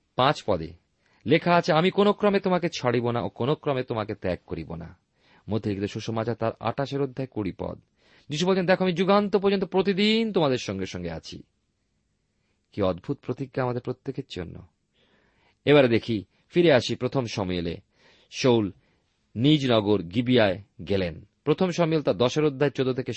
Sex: male